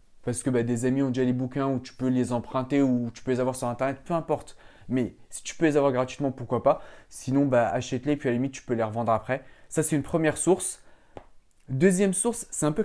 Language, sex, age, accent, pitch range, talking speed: French, male, 20-39, French, 125-155 Hz, 255 wpm